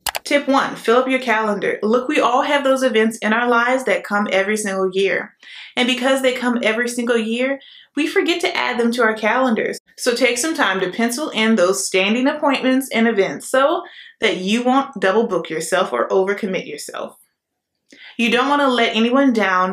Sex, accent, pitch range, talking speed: female, American, 205-265 Hz, 190 wpm